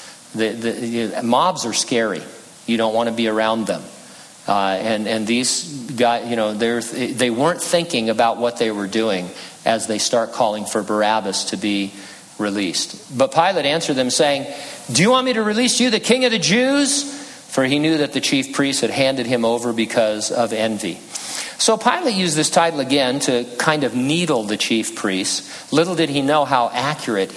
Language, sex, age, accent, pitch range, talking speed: English, male, 50-69, American, 120-190 Hz, 195 wpm